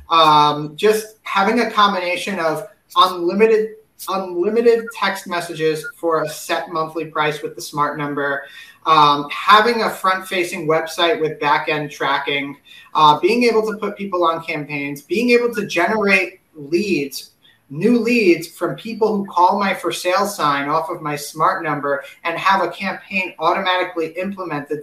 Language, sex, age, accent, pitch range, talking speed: English, male, 30-49, American, 155-190 Hz, 150 wpm